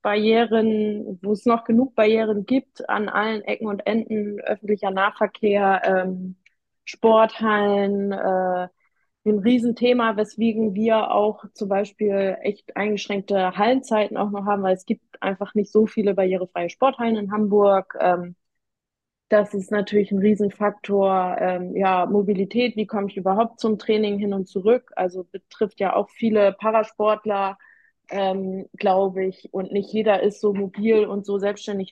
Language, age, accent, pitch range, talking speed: German, 20-39, German, 190-215 Hz, 145 wpm